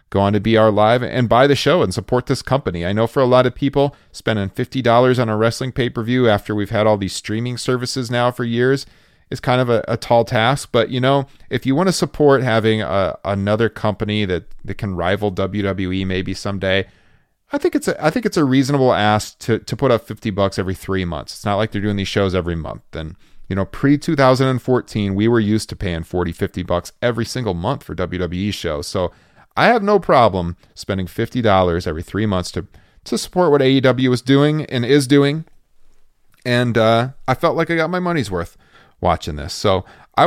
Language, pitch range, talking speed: English, 95-130 Hz, 215 wpm